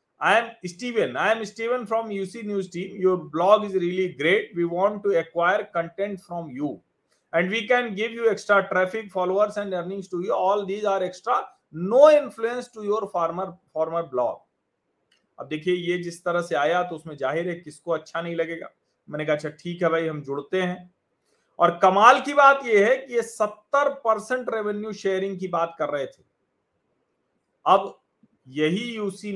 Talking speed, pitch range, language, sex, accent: 90 wpm, 175-230 Hz, Hindi, male, native